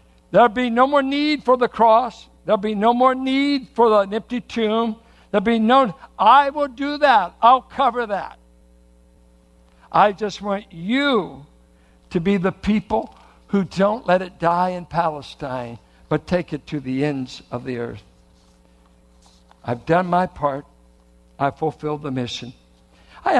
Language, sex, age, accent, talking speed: English, male, 60-79, American, 155 wpm